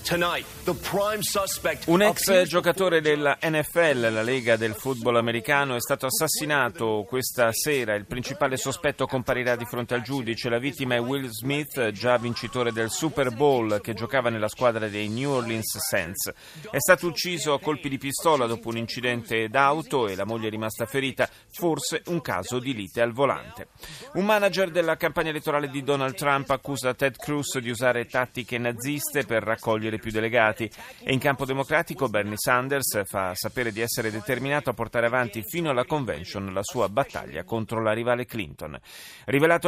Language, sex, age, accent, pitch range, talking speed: Italian, male, 30-49, native, 115-145 Hz, 165 wpm